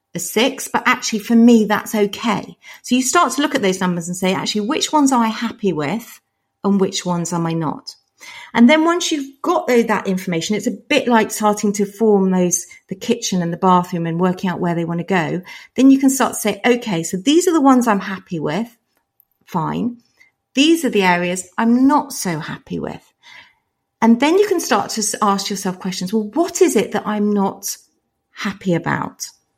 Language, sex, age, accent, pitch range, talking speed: English, female, 40-59, British, 175-240 Hz, 205 wpm